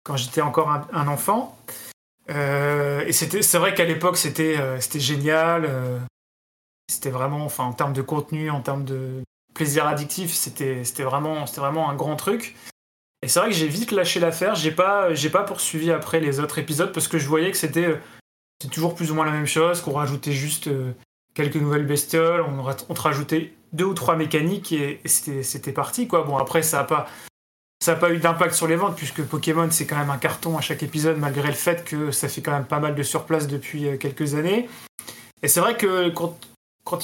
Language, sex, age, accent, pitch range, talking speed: French, male, 20-39, French, 145-170 Hz, 215 wpm